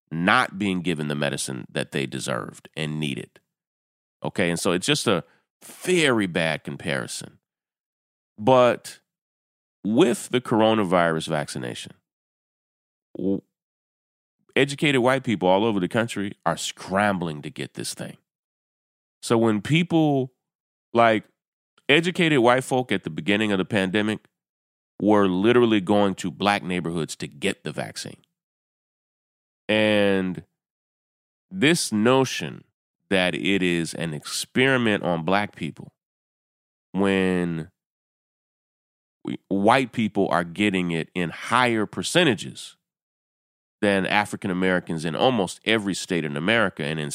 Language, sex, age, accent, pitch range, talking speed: English, male, 30-49, American, 90-115 Hz, 115 wpm